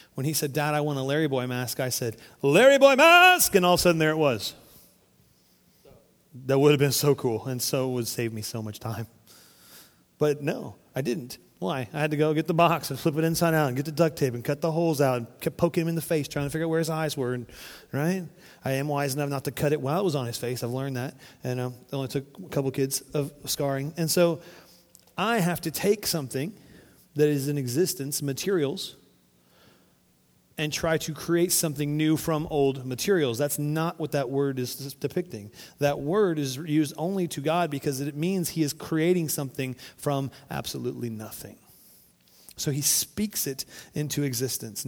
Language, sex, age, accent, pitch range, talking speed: English, male, 30-49, American, 130-160 Hz, 215 wpm